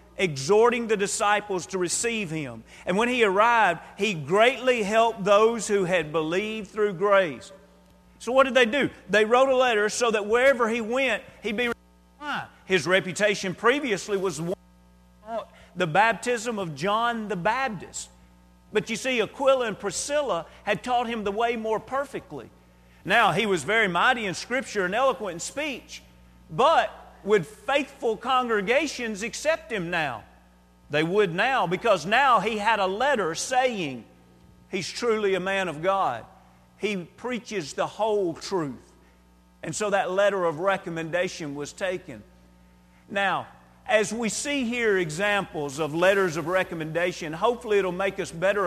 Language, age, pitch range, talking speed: English, 40-59, 165-230 Hz, 150 wpm